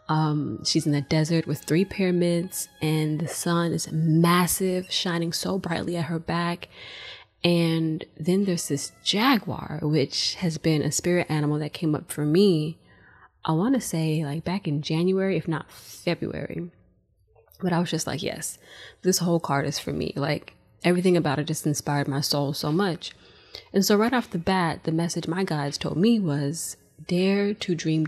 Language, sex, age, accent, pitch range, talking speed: English, female, 20-39, American, 145-175 Hz, 180 wpm